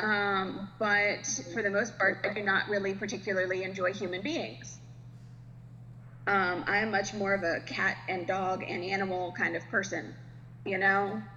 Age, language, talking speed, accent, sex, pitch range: 20-39, English, 160 wpm, American, female, 130-210 Hz